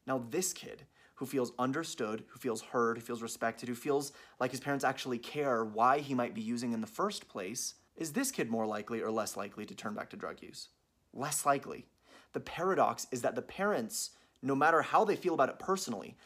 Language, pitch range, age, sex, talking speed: English, 120-155 Hz, 30-49, male, 215 wpm